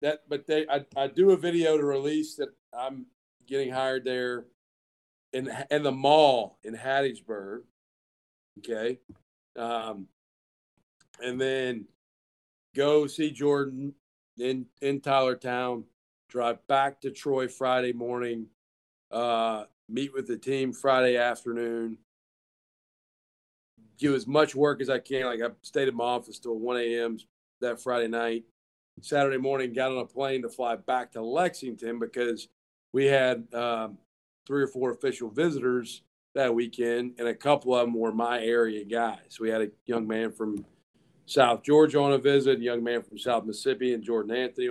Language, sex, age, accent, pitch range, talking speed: English, male, 40-59, American, 115-135 Hz, 155 wpm